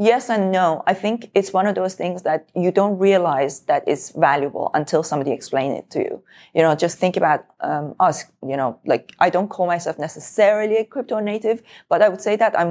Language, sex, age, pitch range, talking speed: English, female, 30-49, 155-190 Hz, 220 wpm